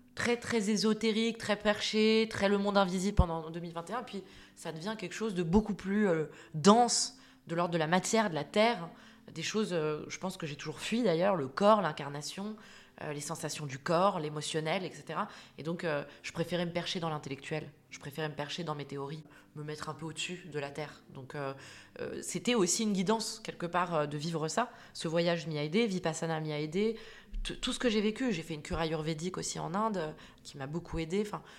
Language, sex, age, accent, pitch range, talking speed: French, female, 20-39, French, 155-200 Hz, 220 wpm